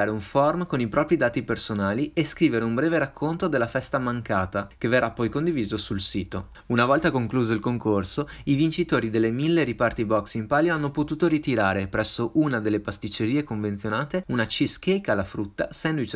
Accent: native